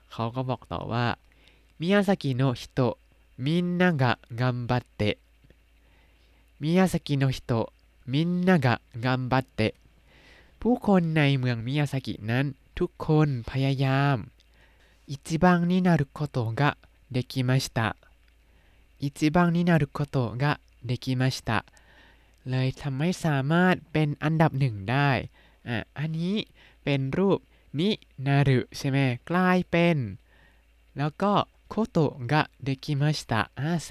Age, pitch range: 20-39, 120-160 Hz